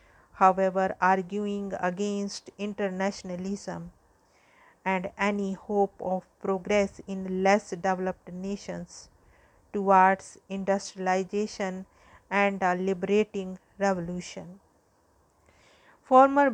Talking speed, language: 75 wpm, English